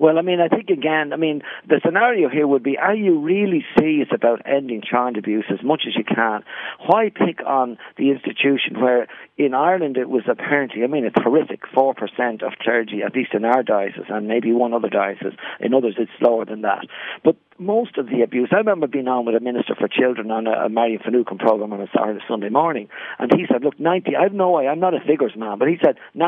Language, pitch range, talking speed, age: English, 115-155 Hz, 230 wpm, 50-69